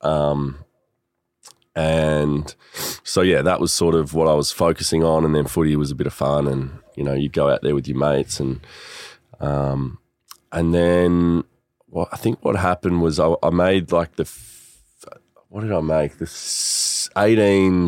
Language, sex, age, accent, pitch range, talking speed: English, male, 20-39, Australian, 75-85 Hz, 175 wpm